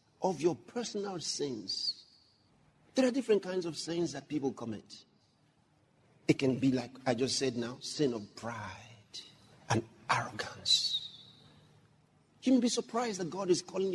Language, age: English, 50-69